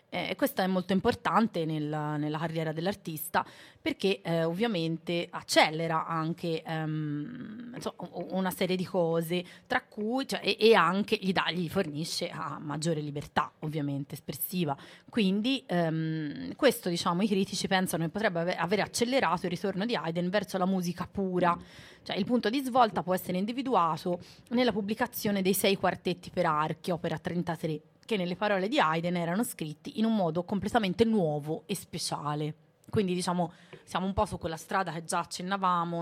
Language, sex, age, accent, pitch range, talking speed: Italian, female, 30-49, native, 155-195 Hz, 160 wpm